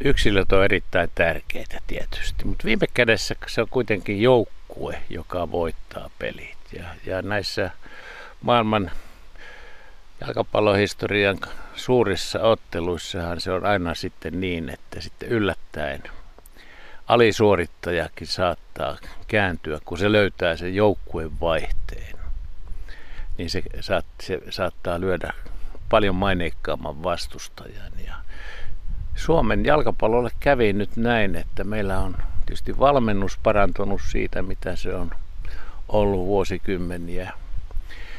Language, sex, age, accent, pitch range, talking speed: Finnish, male, 60-79, native, 85-100 Hz, 105 wpm